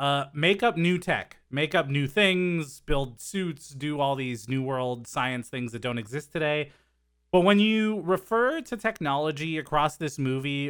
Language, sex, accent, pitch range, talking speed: English, male, American, 125-190 Hz, 175 wpm